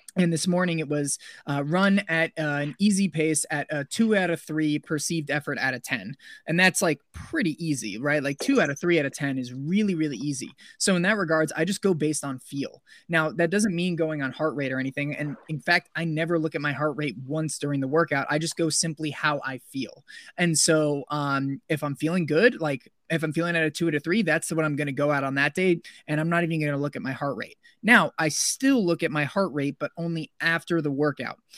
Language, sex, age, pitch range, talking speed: English, male, 20-39, 145-170 Hz, 250 wpm